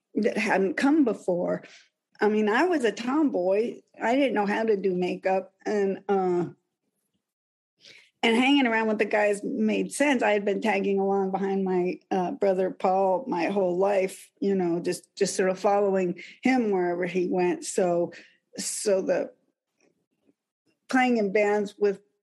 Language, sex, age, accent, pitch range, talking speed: English, female, 50-69, American, 190-240 Hz, 155 wpm